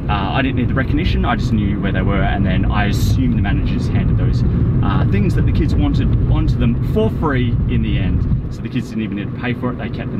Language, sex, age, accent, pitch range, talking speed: English, male, 30-49, Australian, 110-125 Hz, 270 wpm